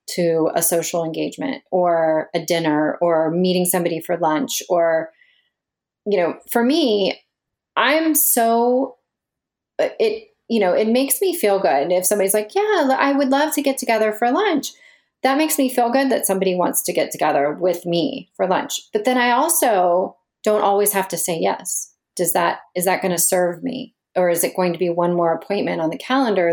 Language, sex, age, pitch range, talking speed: English, female, 30-49, 175-230 Hz, 190 wpm